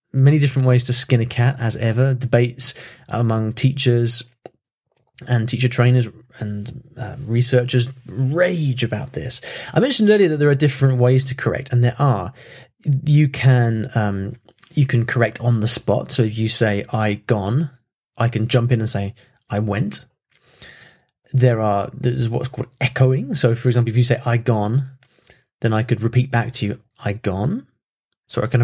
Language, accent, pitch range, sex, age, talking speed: English, British, 115-130 Hz, male, 20-39, 175 wpm